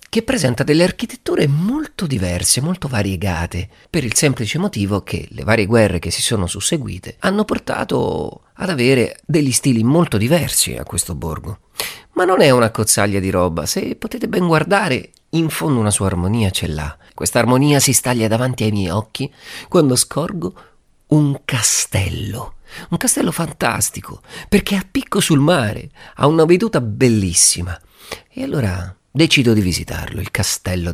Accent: native